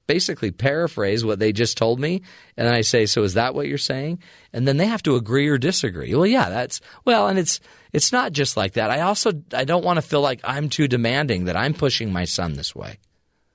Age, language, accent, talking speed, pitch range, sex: 40-59, English, American, 250 wpm, 110-145 Hz, male